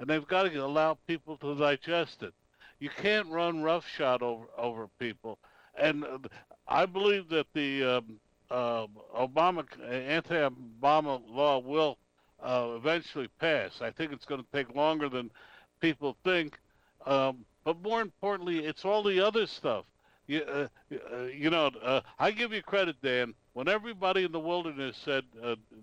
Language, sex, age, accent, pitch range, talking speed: English, male, 60-79, American, 130-175 Hz, 155 wpm